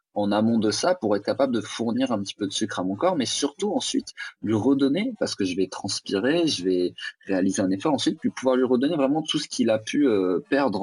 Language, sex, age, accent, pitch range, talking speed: English, male, 30-49, French, 100-135 Hz, 250 wpm